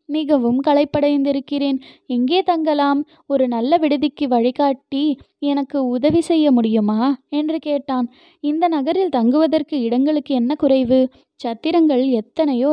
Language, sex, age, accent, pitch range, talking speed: Tamil, female, 20-39, native, 265-315 Hz, 105 wpm